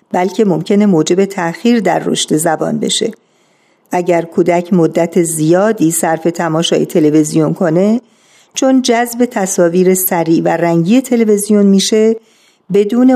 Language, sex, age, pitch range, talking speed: Persian, female, 50-69, 170-215 Hz, 115 wpm